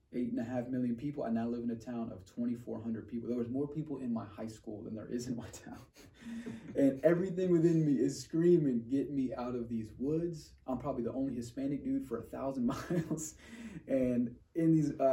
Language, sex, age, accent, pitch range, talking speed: English, male, 20-39, American, 115-140 Hz, 220 wpm